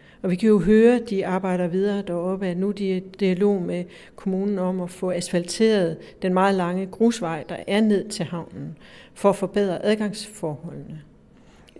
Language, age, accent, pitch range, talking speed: Danish, 60-79, native, 185-210 Hz, 180 wpm